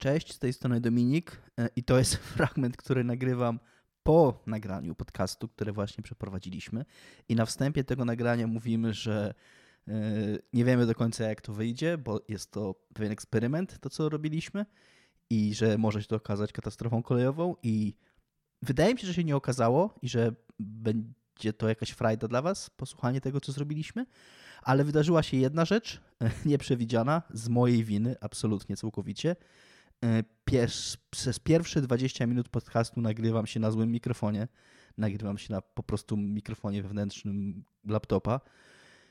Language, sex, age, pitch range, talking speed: Polish, male, 20-39, 110-130 Hz, 145 wpm